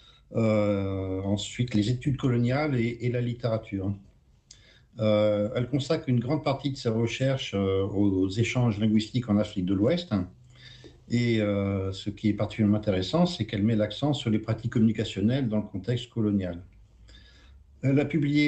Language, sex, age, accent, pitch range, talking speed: French, male, 50-69, French, 100-120 Hz, 160 wpm